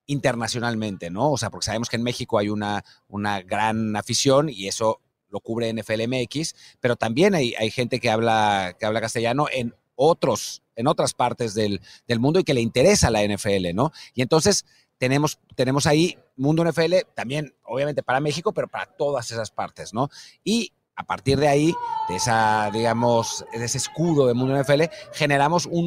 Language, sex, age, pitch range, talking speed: Spanish, male, 40-59, 105-140 Hz, 180 wpm